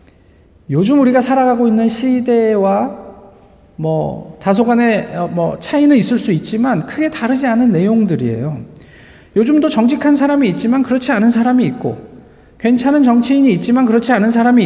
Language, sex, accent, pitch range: Korean, male, native, 165-240 Hz